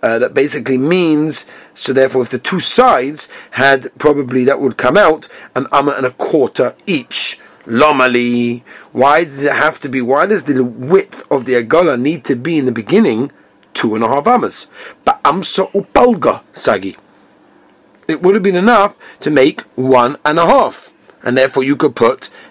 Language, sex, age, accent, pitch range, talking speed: English, male, 40-59, British, 125-170 Hz, 180 wpm